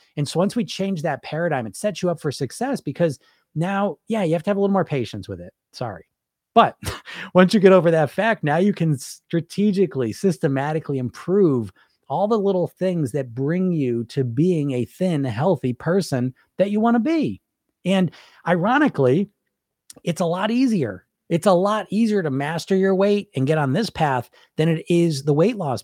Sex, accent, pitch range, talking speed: male, American, 135-190 Hz, 195 wpm